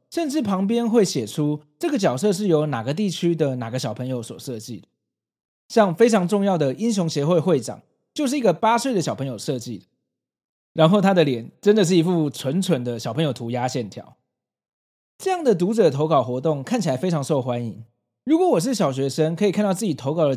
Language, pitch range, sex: Chinese, 130-205 Hz, male